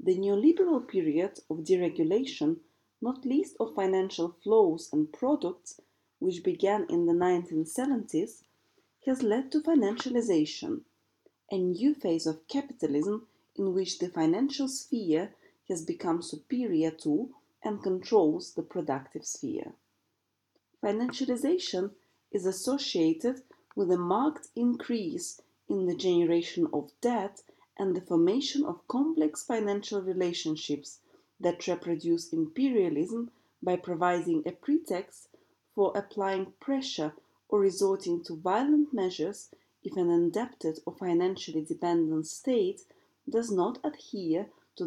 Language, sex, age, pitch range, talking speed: English, female, 30-49, 175-275 Hz, 115 wpm